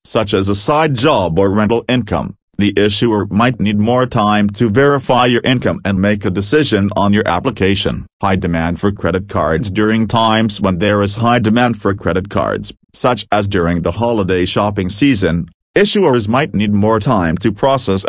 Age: 40-59